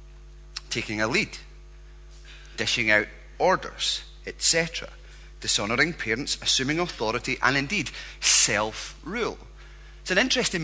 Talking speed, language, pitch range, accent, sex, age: 90 wpm, English, 100-165 Hz, British, male, 30-49